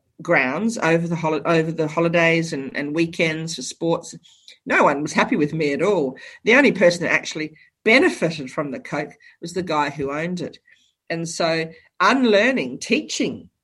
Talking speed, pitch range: 170 wpm, 160-235 Hz